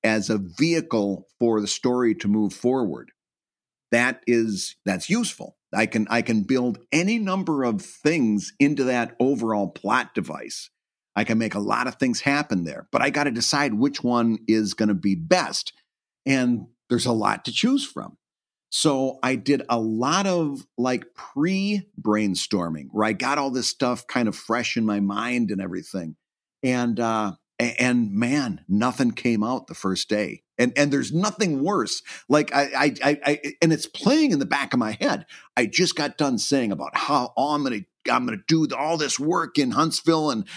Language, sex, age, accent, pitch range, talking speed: English, male, 50-69, American, 110-155 Hz, 185 wpm